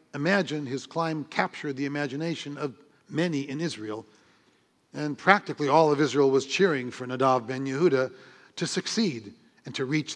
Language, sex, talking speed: English, male, 155 wpm